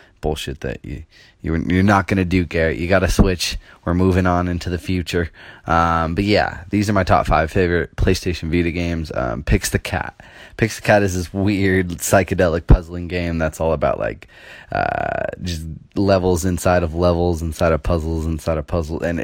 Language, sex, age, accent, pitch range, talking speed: English, male, 20-39, American, 85-95 Hz, 185 wpm